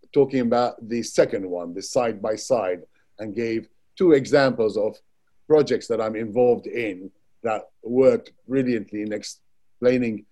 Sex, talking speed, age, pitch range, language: male, 140 wpm, 50-69, 125-175 Hz, English